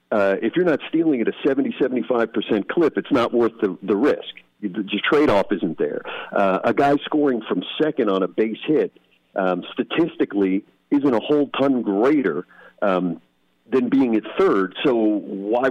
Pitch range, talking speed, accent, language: 100-135 Hz, 170 wpm, American, English